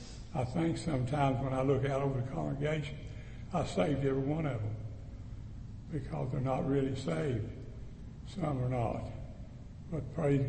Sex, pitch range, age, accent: male, 115-145 Hz, 60-79, American